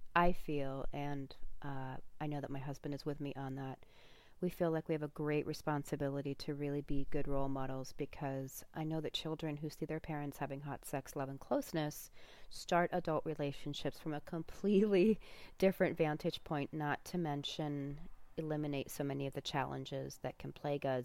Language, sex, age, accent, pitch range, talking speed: English, female, 30-49, American, 135-155 Hz, 180 wpm